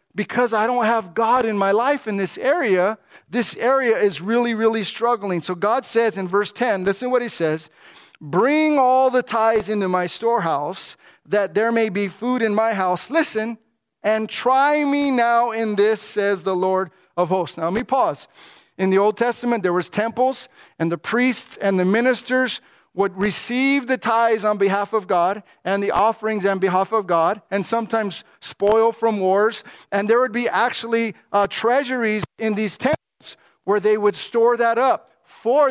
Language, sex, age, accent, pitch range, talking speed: English, male, 40-59, American, 195-235 Hz, 185 wpm